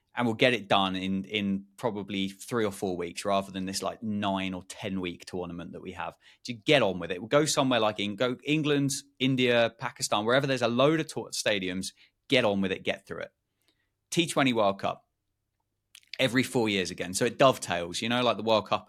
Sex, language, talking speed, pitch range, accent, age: male, English, 215 wpm, 95-130 Hz, British, 20-39